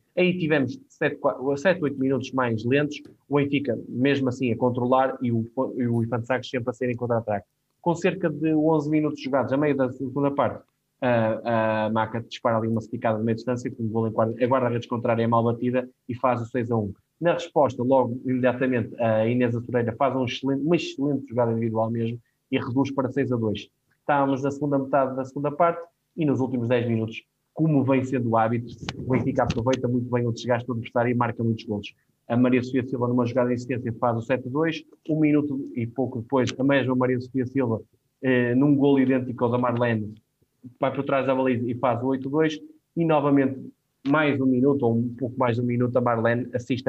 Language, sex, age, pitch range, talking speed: Portuguese, male, 20-39, 120-135 Hz, 200 wpm